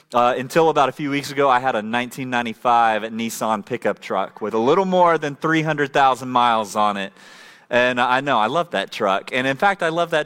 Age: 30-49